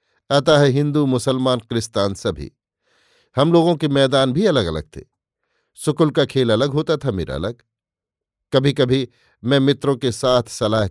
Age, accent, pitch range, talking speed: 50-69, native, 120-145 Hz, 160 wpm